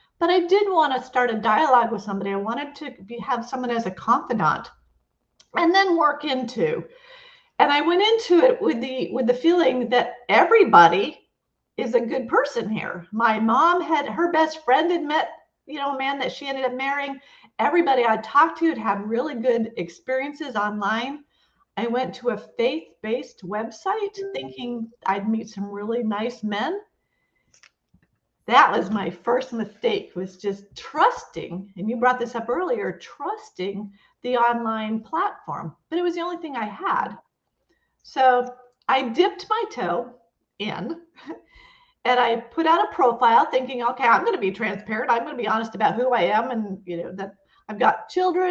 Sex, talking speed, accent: female, 175 wpm, American